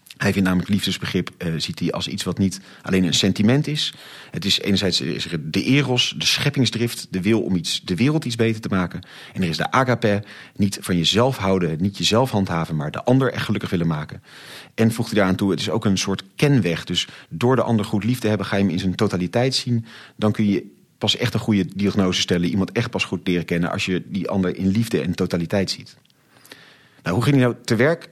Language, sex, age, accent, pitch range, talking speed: Dutch, male, 40-59, Dutch, 90-115 Hz, 235 wpm